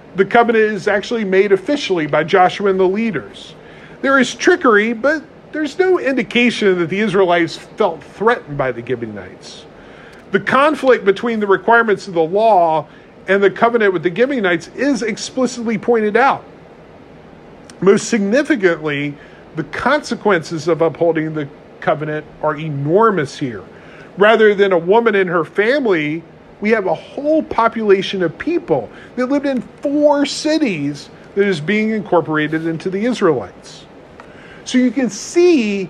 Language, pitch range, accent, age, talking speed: English, 175-245 Hz, American, 40-59, 140 wpm